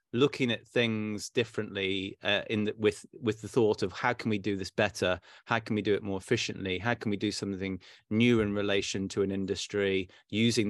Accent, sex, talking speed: British, male, 210 wpm